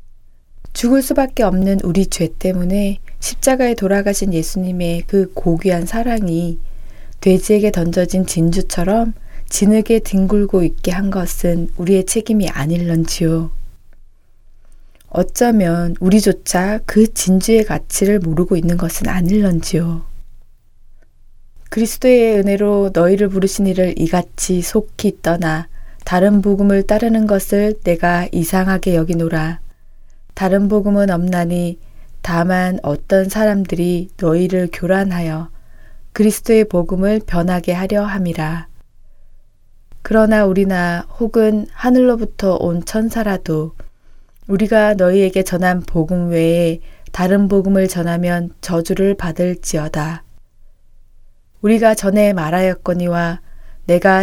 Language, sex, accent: Korean, female, native